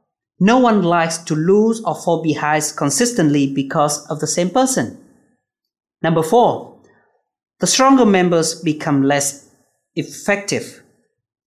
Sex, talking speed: male, 115 wpm